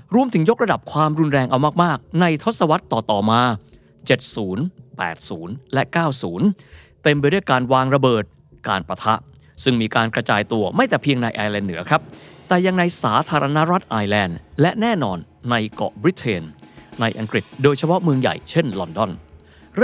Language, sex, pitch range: Thai, male, 115-175 Hz